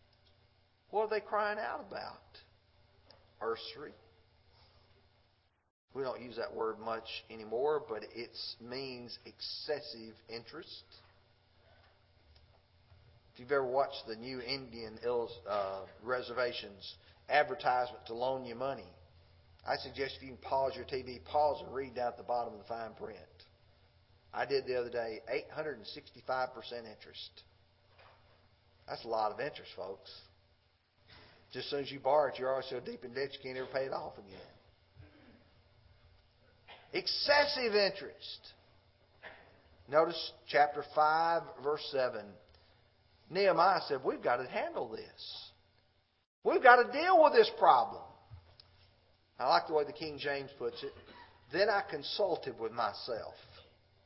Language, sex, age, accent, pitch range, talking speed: English, male, 40-59, American, 95-135 Hz, 130 wpm